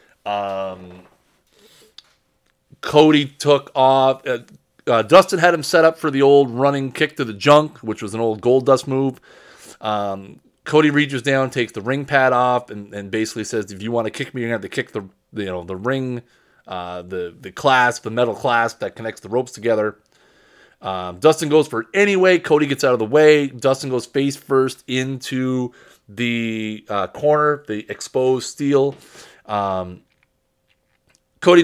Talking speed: 175 wpm